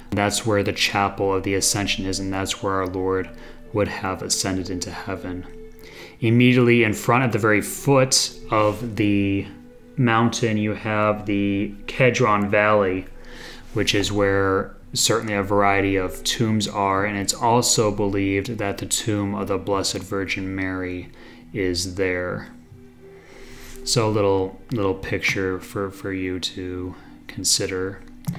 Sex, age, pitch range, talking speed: male, 30-49, 95-120 Hz, 140 wpm